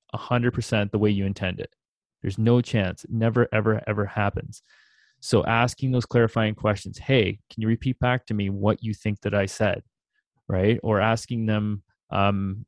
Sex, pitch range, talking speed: male, 100-125 Hz, 185 wpm